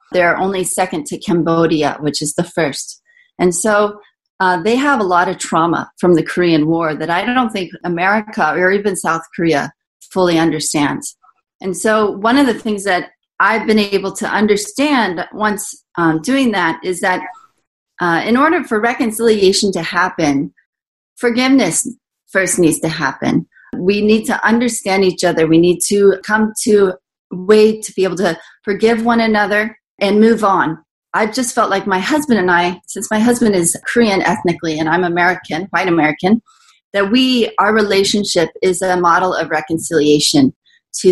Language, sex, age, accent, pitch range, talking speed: English, female, 30-49, American, 175-220 Hz, 170 wpm